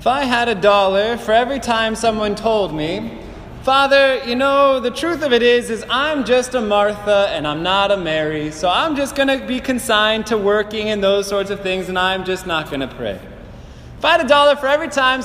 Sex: male